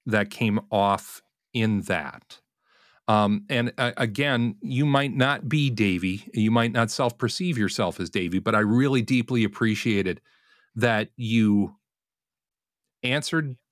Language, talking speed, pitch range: English, 125 wpm, 115-145 Hz